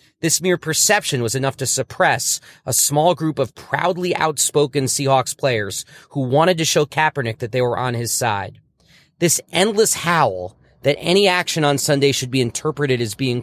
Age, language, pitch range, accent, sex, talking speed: 40-59, English, 125-165 Hz, American, male, 175 wpm